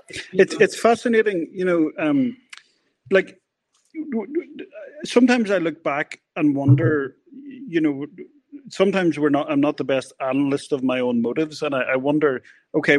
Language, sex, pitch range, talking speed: English, male, 130-185 Hz, 155 wpm